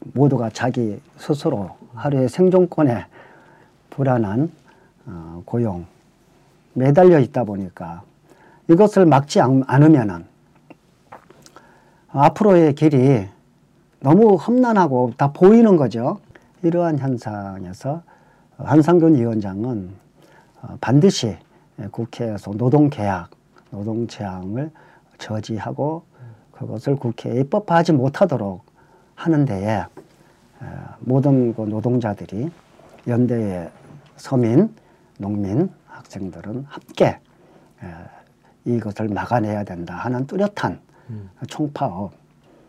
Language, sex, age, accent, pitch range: Korean, male, 40-59, native, 110-160 Hz